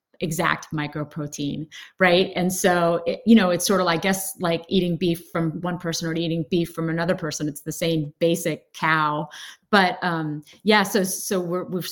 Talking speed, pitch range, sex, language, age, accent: 185 wpm, 165-195 Hz, female, English, 30-49, American